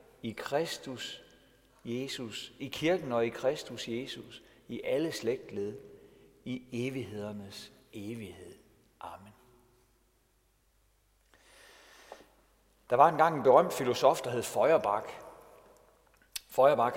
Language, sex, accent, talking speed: Danish, male, native, 90 wpm